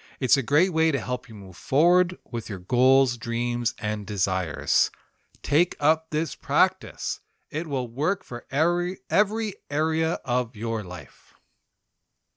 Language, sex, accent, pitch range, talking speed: English, male, American, 100-145 Hz, 140 wpm